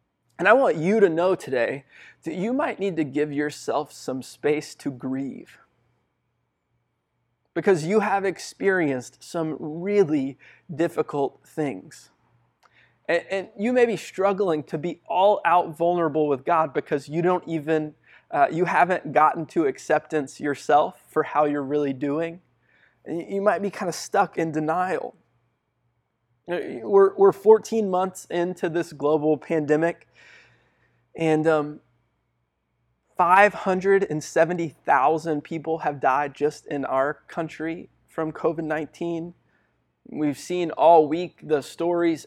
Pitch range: 150-180 Hz